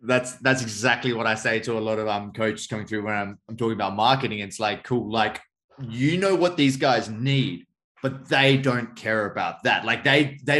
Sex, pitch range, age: male, 105-130 Hz, 20-39